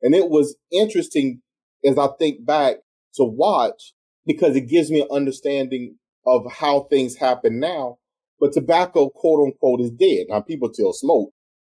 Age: 30-49